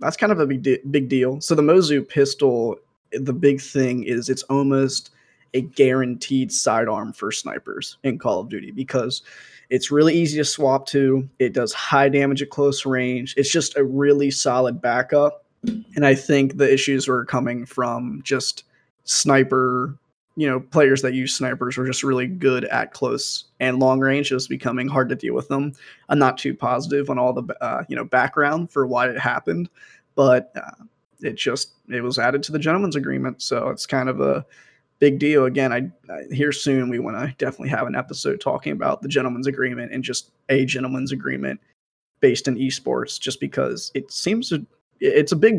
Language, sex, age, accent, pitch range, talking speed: English, male, 20-39, American, 125-145 Hz, 190 wpm